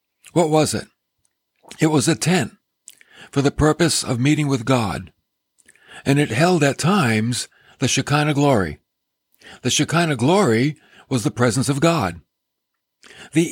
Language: English